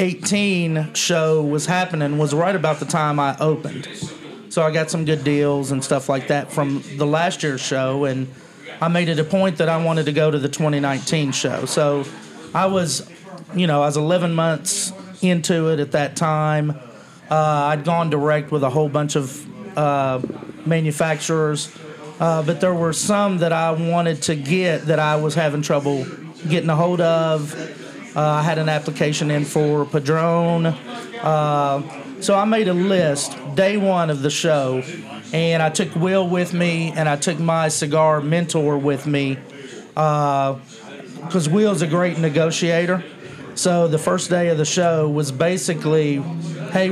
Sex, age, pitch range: male, 40-59, 150-170 Hz